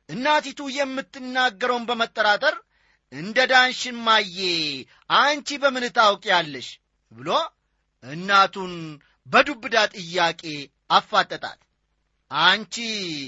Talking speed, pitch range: 60 wpm, 180-275 Hz